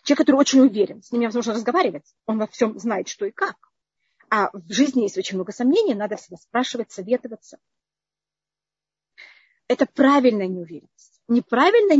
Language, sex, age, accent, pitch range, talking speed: Russian, female, 30-49, native, 210-275 Hz, 150 wpm